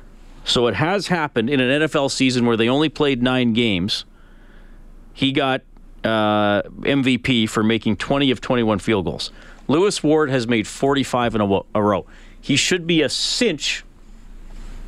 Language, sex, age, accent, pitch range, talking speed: English, male, 40-59, American, 110-140 Hz, 155 wpm